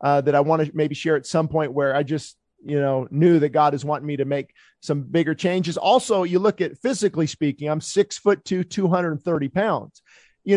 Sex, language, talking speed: male, English, 220 wpm